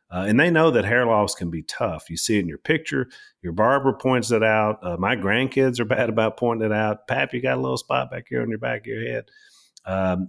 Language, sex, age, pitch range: English, male, 40-59, 90-120 Hz